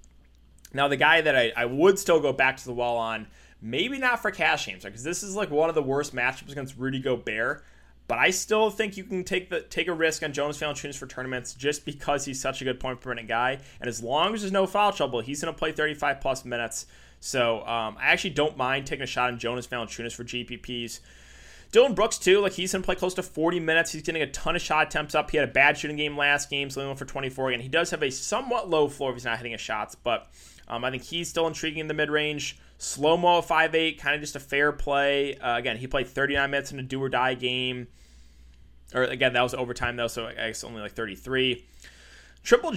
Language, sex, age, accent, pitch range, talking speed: English, male, 20-39, American, 120-155 Hz, 250 wpm